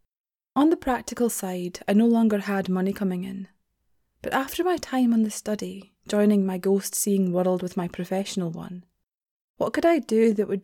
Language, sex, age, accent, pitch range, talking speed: English, female, 20-39, British, 180-220 Hz, 180 wpm